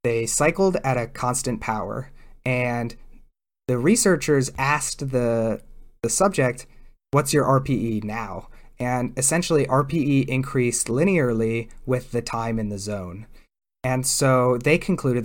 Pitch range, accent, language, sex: 115-145 Hz, American, English, male